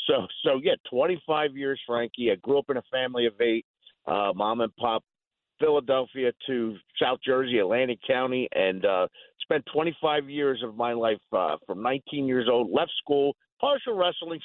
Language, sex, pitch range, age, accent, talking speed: English, male, 120-155 Hz, 50-69, American, 170 wpm